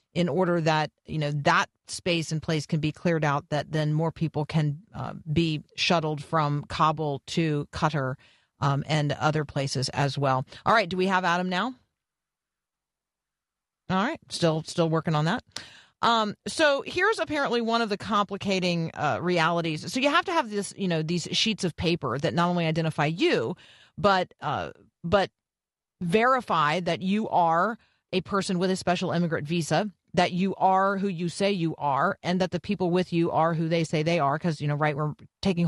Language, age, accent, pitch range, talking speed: English, 40-59, American, 155-200 Hz, 190 wpm